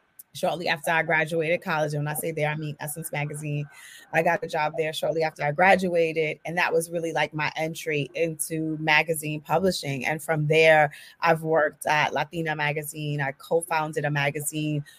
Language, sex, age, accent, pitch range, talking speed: English, female, 30-49, American, 155-205 Hz, 180 wpm